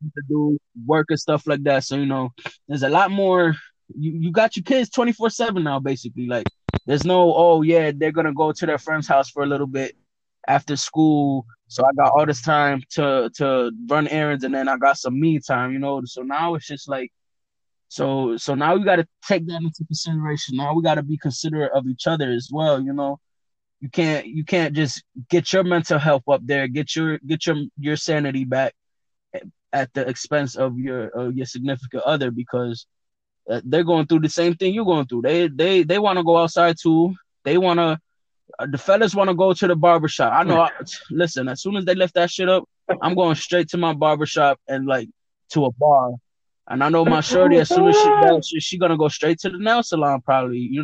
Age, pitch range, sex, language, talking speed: 20-39, 135-170 Hz, male, English, 225 wpm